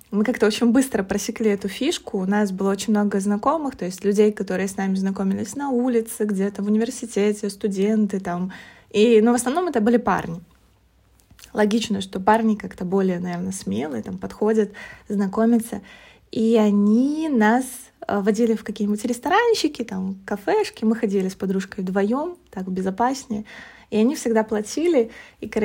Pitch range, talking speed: 200-235 Hz, 145 wpm